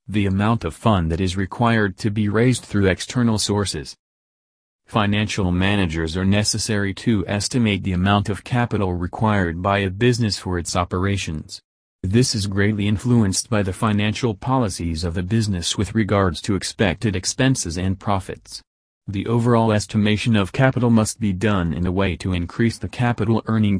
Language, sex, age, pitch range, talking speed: English, male, 40-59, 95-115 Hz, 160 wpm